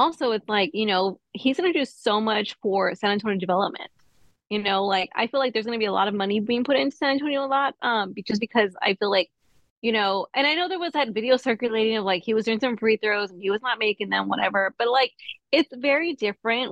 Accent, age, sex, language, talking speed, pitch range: American, 20-39, female, English, 260 wpm, 200-245 Hz